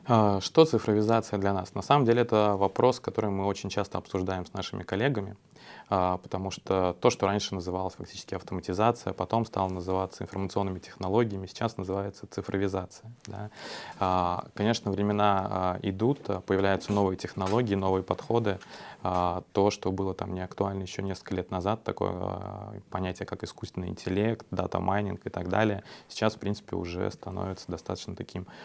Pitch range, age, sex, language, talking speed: 95-105 Hz, 20-39, male, English, 140 wpm